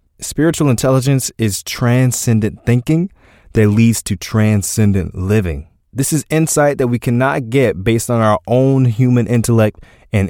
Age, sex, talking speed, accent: 20-39, male, 140 wpm, American